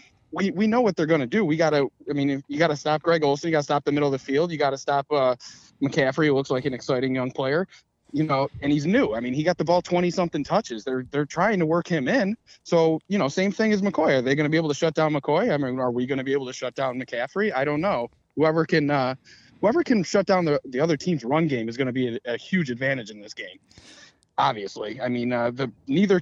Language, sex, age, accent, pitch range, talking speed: English, male, 20-39, American, 130-165 Hz, 285 wpm